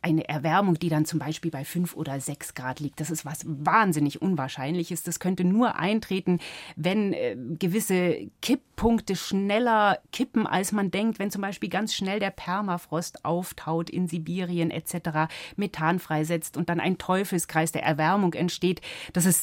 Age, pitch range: 30-49, 160-220 Hz